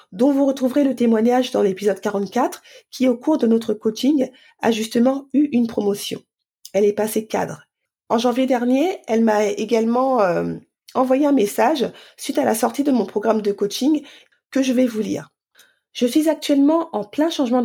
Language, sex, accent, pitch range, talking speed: French, female, French, 215-265 Hz, 185 wpm